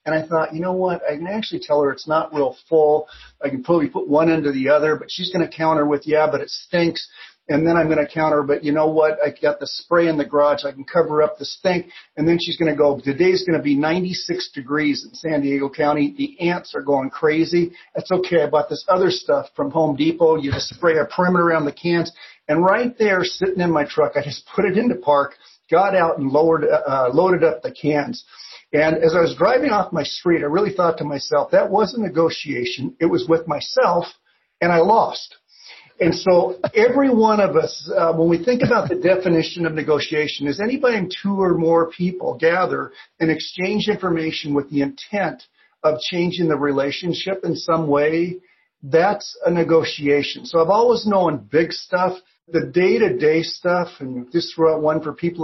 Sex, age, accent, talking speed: male, 50-69, American, 210 wpm